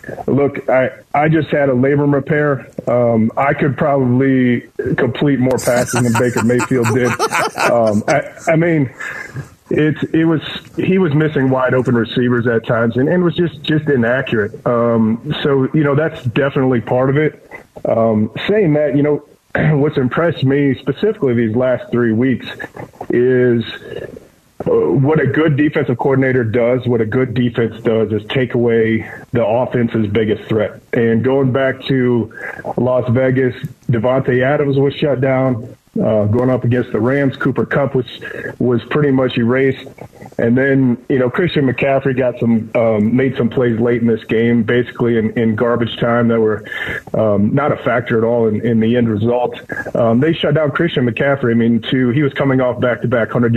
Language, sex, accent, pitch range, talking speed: English, male, American, 120-140 Hz, 175 wpm